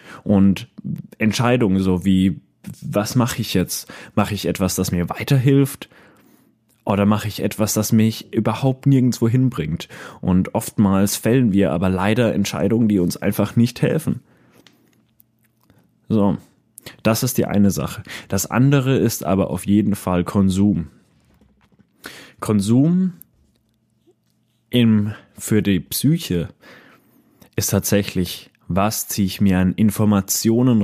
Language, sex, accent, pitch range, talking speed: German, male, German, 95-115 Hz, 120 wpm